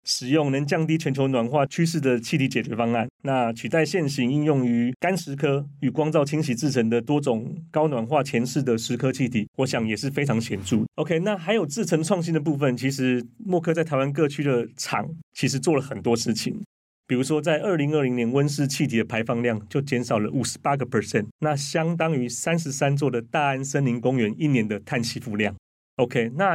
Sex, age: male, 30-49